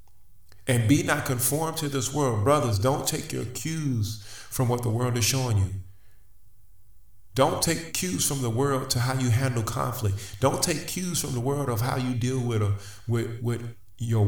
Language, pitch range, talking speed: English, 100-125 Hz, 180 wpm